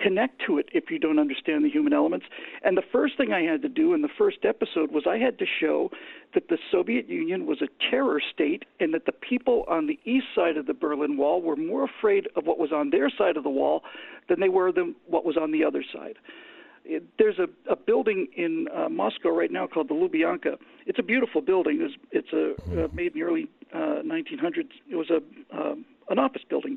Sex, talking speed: male, 220 wpm